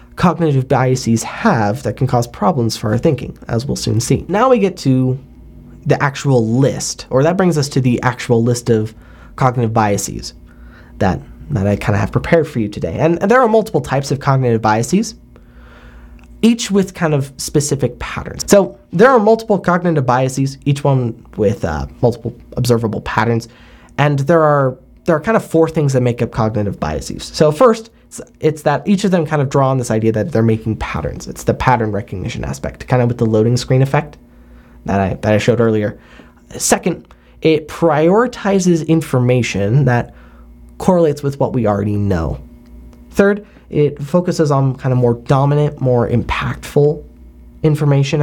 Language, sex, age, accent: English, male, 20-39, American